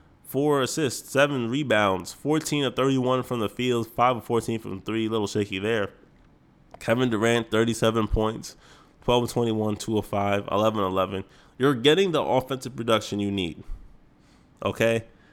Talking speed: 150 wpm